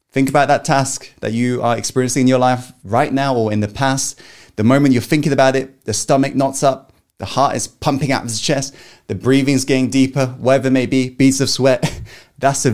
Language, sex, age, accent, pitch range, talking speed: English, male, 20-39, British, 130-170 Hz, 225 wpm